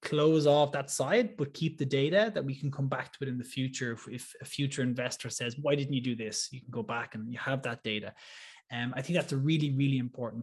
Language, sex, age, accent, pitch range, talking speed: English, male, 20-39, Irish, 120-145 Hz, 265 wpm